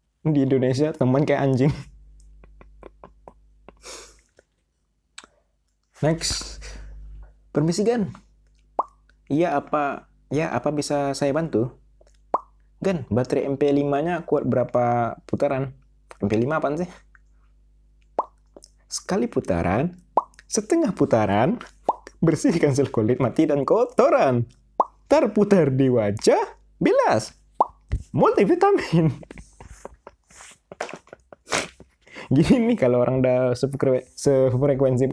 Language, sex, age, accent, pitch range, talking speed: Indonesian, male, 20-39, native, 130-195 Hz, 75 wpm